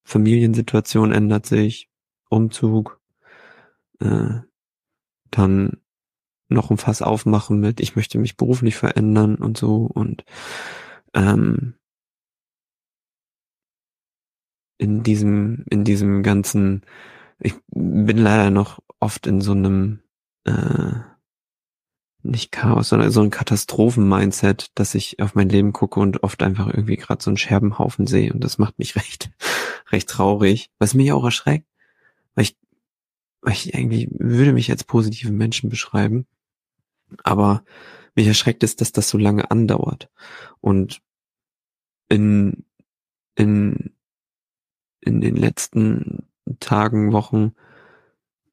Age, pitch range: 20-39, 100-115 Hz